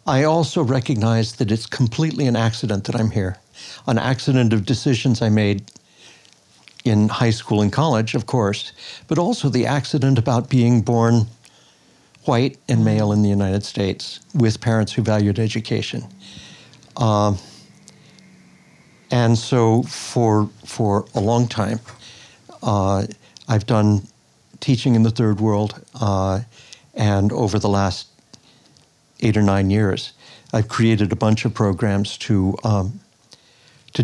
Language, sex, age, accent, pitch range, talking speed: English, male, 60-79, American, 105-125 Hz, 135 wpm